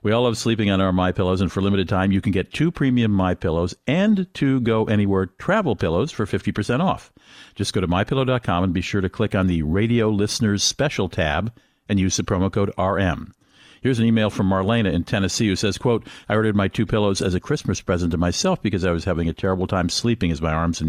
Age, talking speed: 50-69, 230 wpm